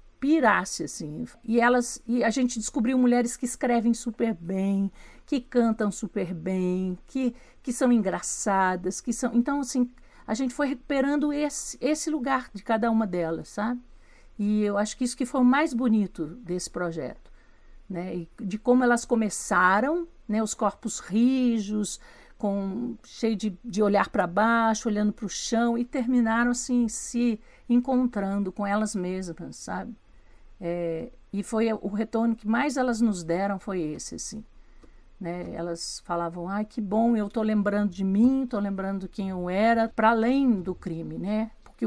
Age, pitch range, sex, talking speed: 50-69, 200-245 Hz, female, 165 wpm